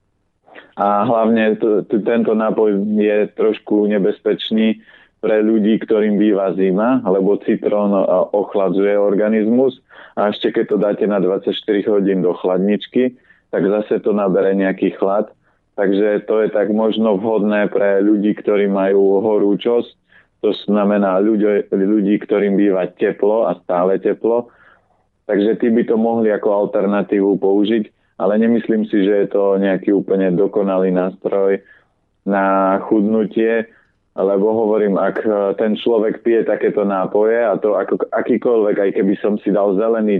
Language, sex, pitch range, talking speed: Slovak, male, 100-110 Hz, 135 wpm